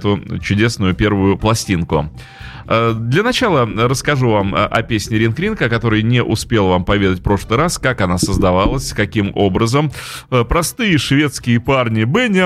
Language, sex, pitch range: Russian, male, 105-140 Hz